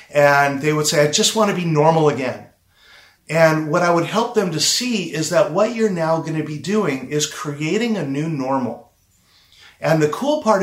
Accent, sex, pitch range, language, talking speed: American, male, 145-190 Hz, English, 210 wpm